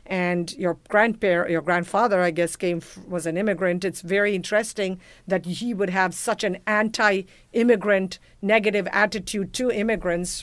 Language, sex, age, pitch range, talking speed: English, female, 50-69, 190-220 Hz, 140 wpm